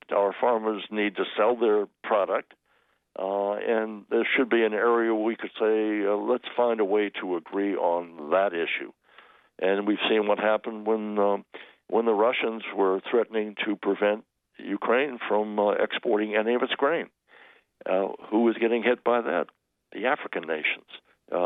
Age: 60-79